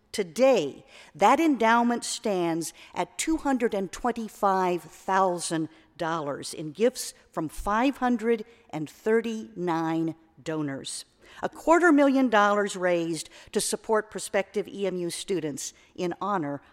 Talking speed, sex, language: 85 wpm, female, English